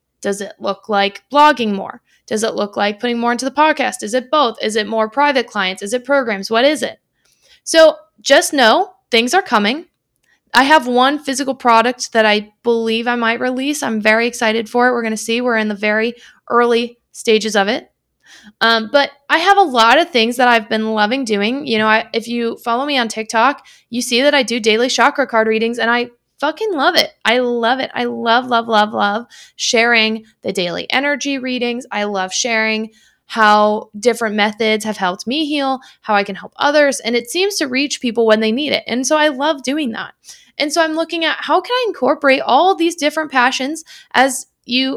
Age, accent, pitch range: 20-39, American, 220-285 Hz